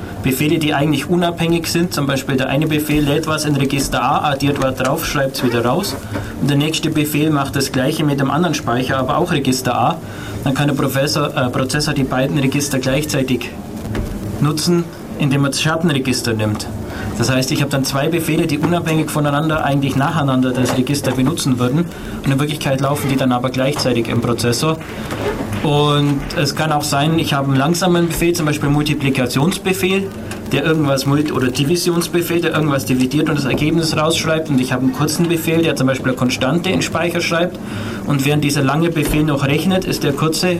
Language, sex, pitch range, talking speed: German, male, 130-155 Hz, 185 wpm